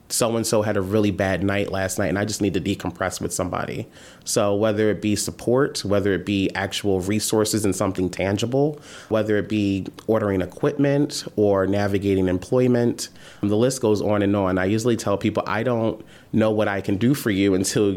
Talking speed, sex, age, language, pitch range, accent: 190 wpm, male, 30-49, English, 95-115 Hz, American